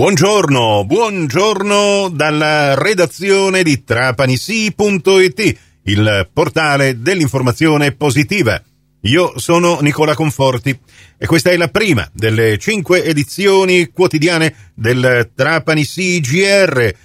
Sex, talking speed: male, 90 wpm